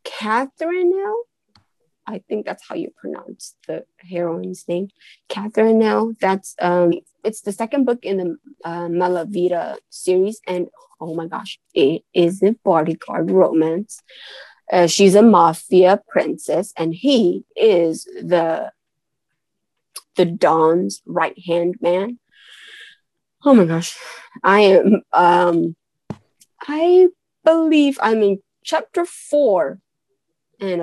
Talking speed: 115 wpm